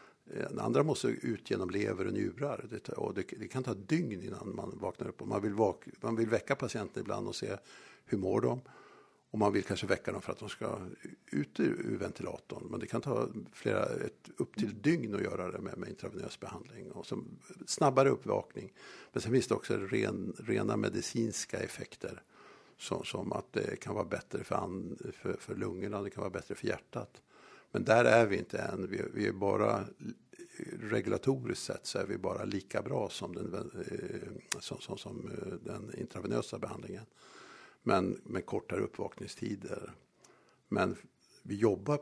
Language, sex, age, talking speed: Swedish, male, 60-79, 170 wpm